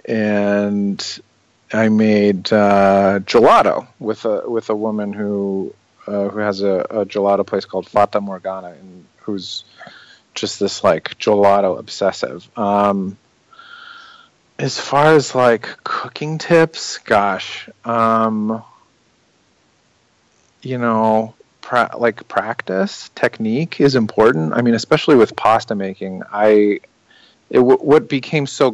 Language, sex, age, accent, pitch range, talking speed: English, male, 40-59, American, 100-130 Hz, 115 wpm